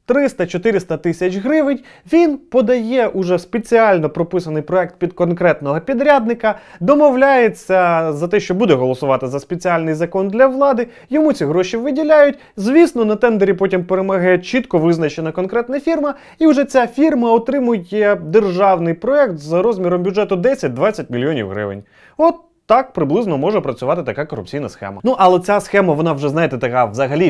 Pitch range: 160-240 Hz